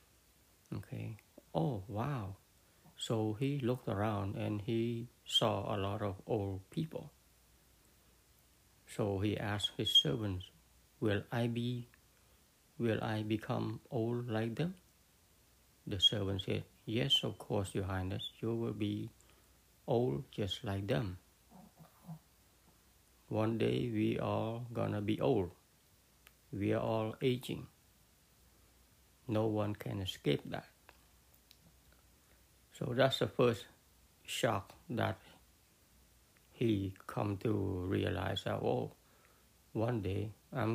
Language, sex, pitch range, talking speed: English, male, 95-115 Hz, 110 wpm